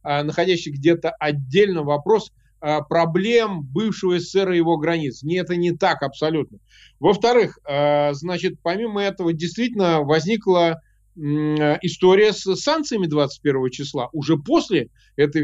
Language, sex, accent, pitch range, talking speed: Ukrainian, male, native, 160-210 Hz, 115 wpm